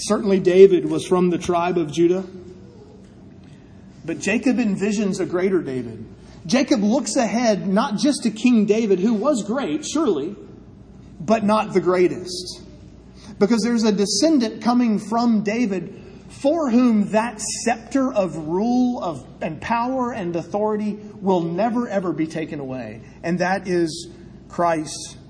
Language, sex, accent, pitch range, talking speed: English, male, American, 165-230 Hz, 135 wpm